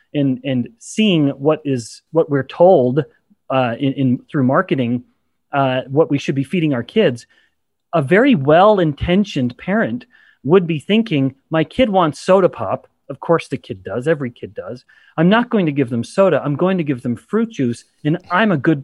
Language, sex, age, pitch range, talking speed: English, male, 30-49, 135-185 Hz, 185 wpm